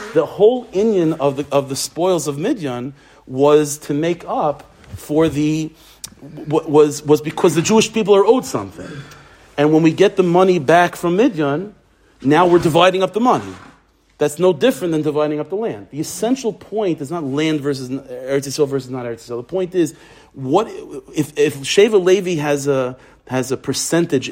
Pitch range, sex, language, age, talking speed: 140-175 Hz, male, English, 40-59, 180 wpm